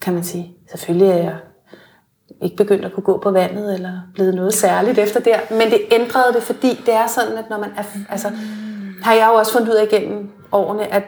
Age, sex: 30-49, female